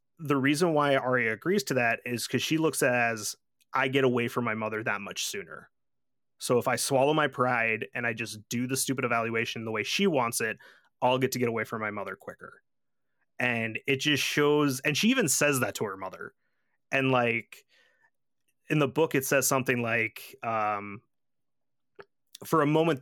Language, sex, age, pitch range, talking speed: English, male, 30-49, 115-140 Hz, 195 wpm